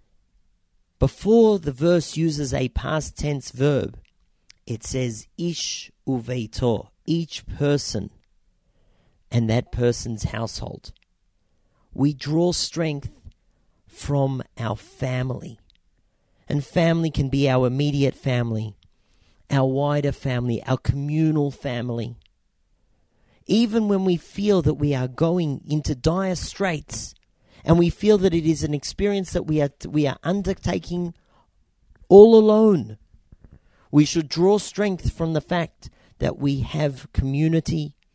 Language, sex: English, male